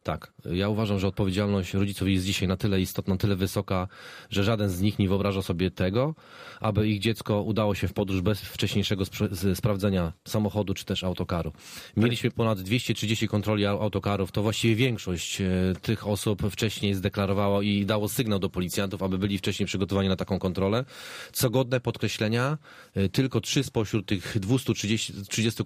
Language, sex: Polish, male